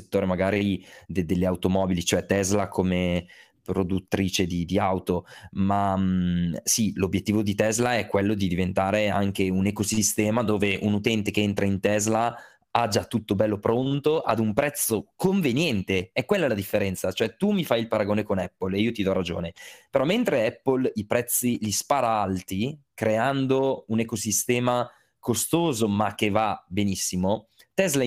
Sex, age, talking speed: male, 20-39, 160 wpm